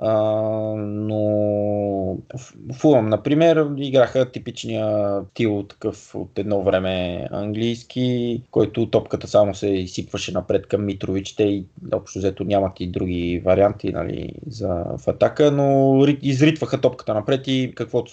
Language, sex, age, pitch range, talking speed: Bulgarian, male, 20-39, 105-130 Hz, 125 wpm